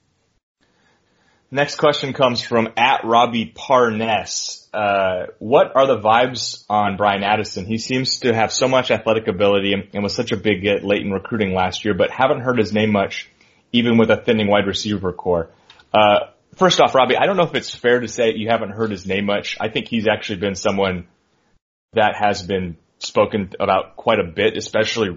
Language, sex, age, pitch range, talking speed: English, male, 30-49, 95-115 Hz, 195 wpm